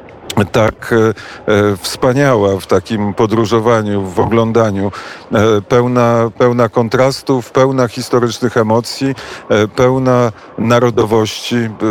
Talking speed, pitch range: 75 wpm, 110-125 Hz